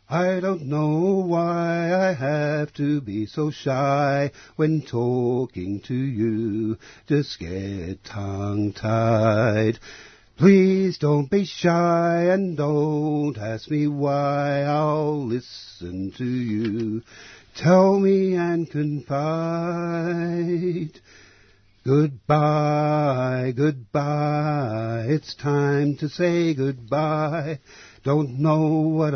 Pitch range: 115-170 Hz